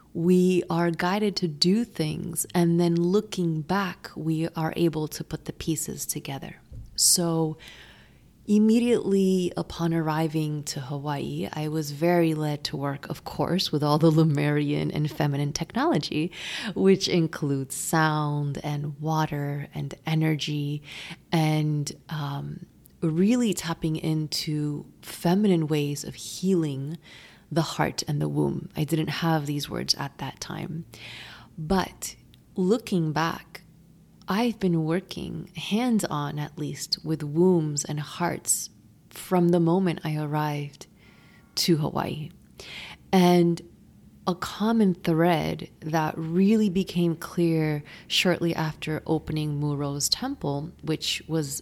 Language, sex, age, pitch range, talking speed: English, female, 30-49, 150-175 Hz, 120 wpm